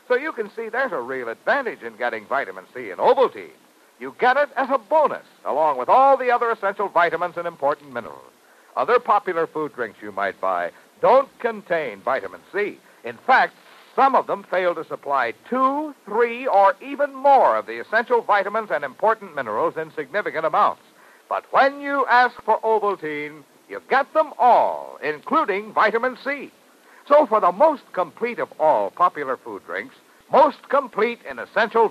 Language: English